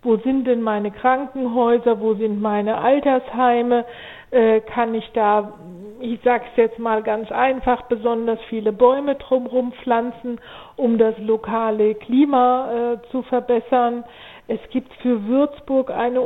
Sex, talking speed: female, 130 wpm